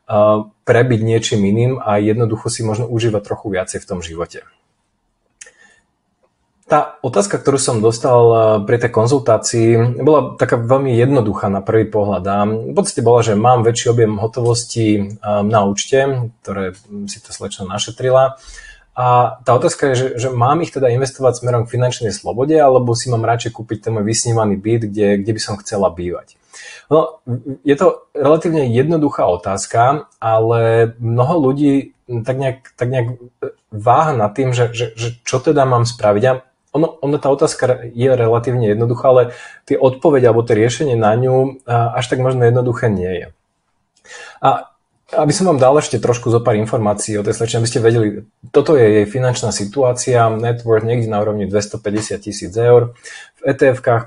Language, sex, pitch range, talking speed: Slovak, male, 110-130 Hz, 160 wpm